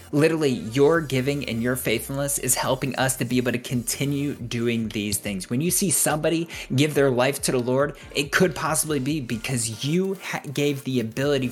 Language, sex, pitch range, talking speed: English, male, 115-135 Hz, 190 wpm